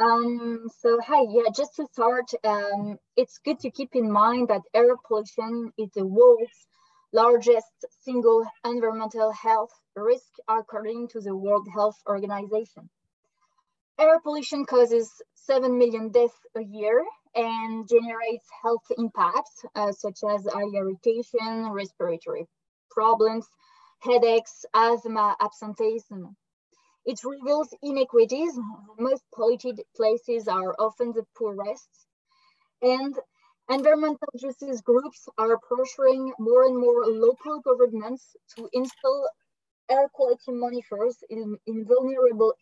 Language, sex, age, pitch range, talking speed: English, female, 20-39, 220-270 Hz, 115 wpm